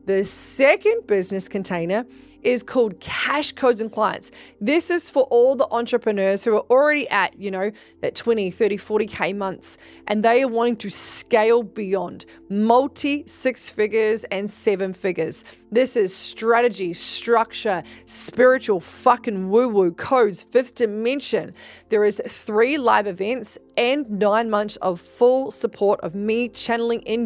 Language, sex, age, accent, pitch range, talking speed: English, female, 20-39, Australian, 195-250 Hz, 145 wpm